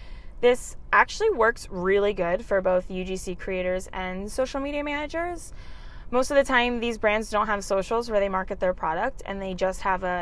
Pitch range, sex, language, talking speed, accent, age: 185-230 Hz, female, English, 190 wpm, American, 20-39